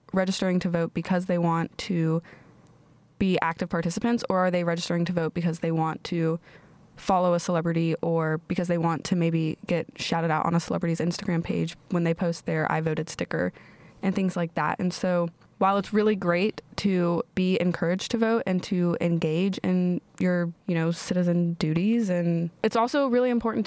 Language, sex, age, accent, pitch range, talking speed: English, female, 20-39, American, 170-190 Hz, 185 wpm